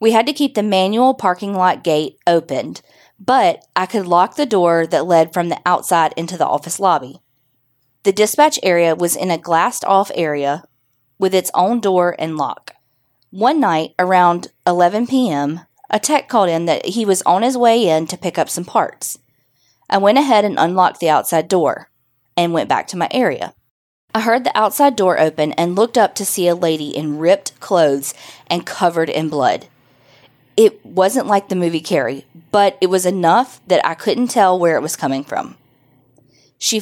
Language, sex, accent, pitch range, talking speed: English, female, American, 160-210 Hz, 185 wpm